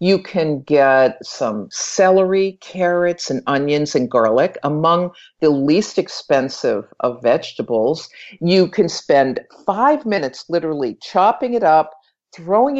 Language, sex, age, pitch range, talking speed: English, female, 50-69, 145-200 Hz, 120 wpm